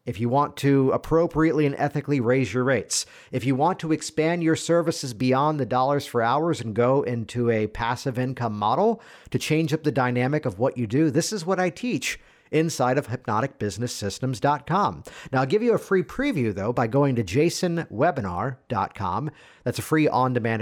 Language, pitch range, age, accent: English, 115-155 Hz, 50-69, American